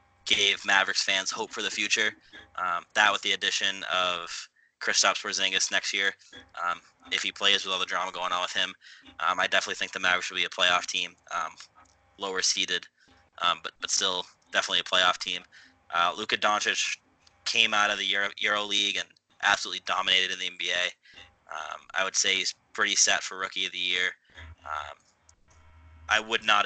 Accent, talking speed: American, 185 wpm